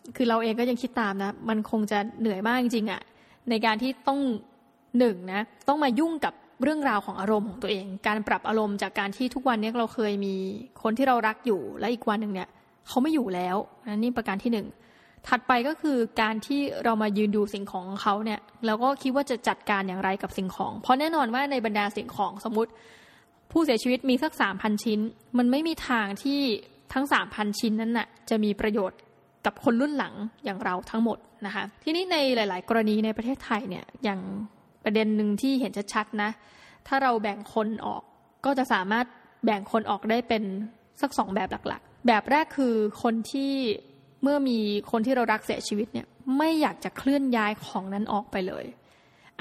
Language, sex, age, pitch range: Thai, female, 20-39, 210-255 Hz